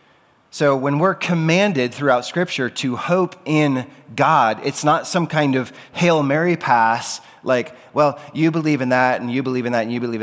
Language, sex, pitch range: English, male, 105-140 Hz